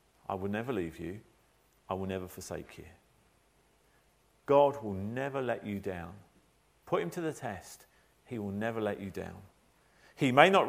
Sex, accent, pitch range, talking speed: male, British, 120-180 Hz, 170 wpm